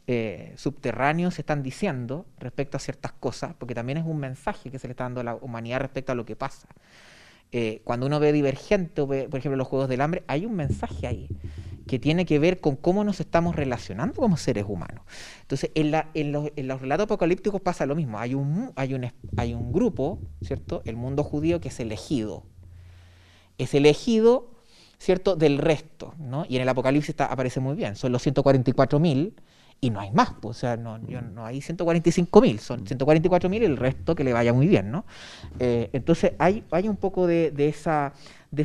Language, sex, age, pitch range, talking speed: Spanish, male, 30-49, 125-170 Hz, 205 wpm